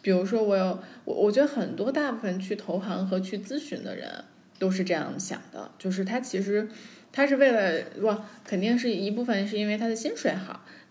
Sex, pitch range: female, 190-255 Hz